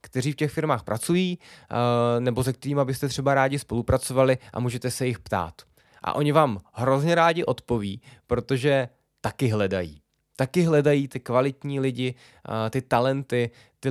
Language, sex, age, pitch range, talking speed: Czech, male, 20-39, 120-145 Hz, 145 wpm